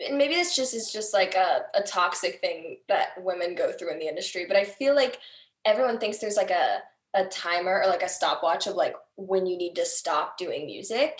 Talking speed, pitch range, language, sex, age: 220 wpm, 185-230 Hz, English, female, 10-29